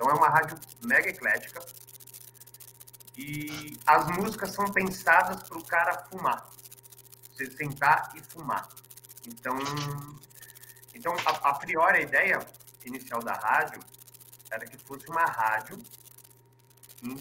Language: Portuguese